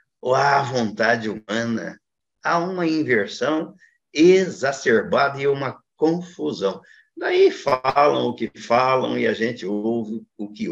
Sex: male